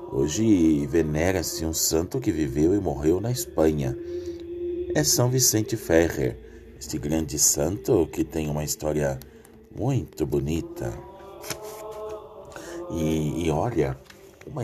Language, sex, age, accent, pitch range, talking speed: Portuguese, male, 50-69, Brazilian, 80-130 Hz, 110 wpm